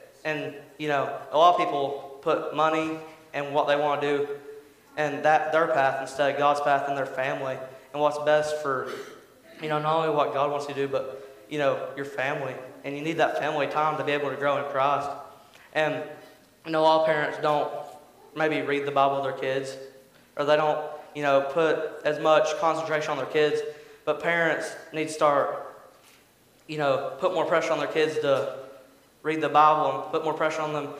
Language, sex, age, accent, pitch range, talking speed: English, male, 20-39, American, 145-155 Hz, 205 wpm